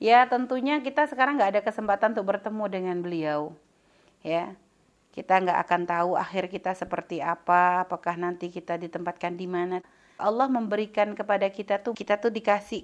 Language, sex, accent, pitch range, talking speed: Indonesian, female, native, 185-255 Hz, 160 wpm